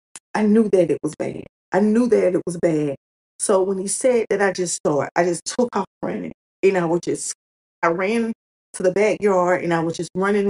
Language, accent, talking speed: English, American, 230 wpm